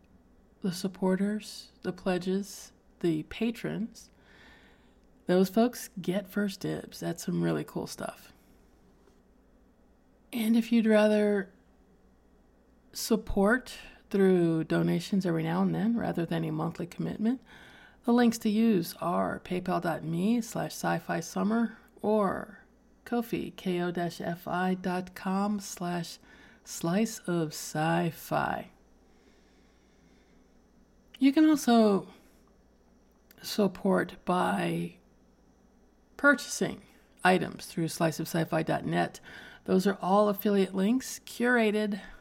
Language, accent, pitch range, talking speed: English, American, 175-225 Hz, 85 wpm